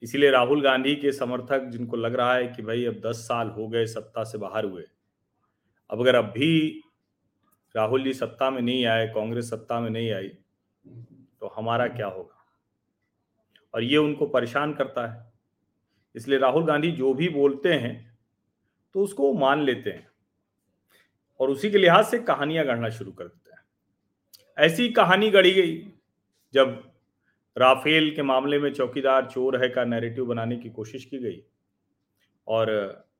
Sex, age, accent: male, 40-59, native